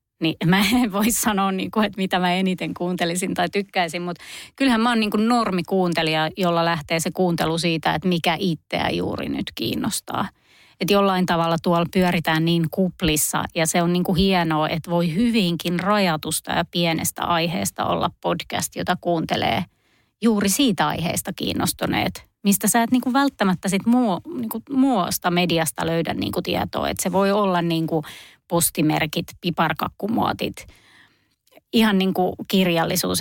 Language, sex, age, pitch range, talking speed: Finnish, female, 30-49, 165-195 Hz, 155 wpm